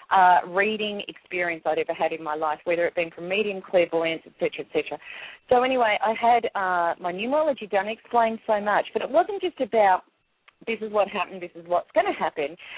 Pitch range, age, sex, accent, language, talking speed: 200-275 Hz, 40-59, female, Australian, English, 200 wpm